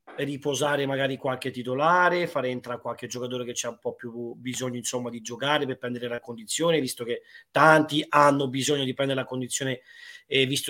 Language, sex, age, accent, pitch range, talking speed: Italian, male, 30-49, native, 130-185 Hz, 180 wpm